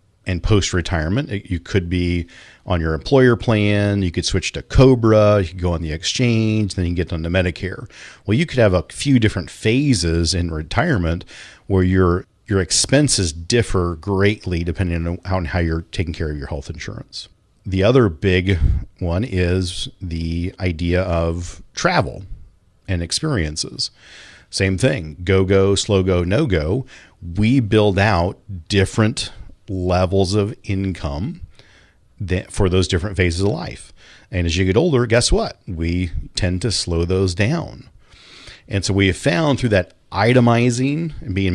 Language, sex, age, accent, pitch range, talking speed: English, male, 40-59, American, 90-110 Hz, 150 wpm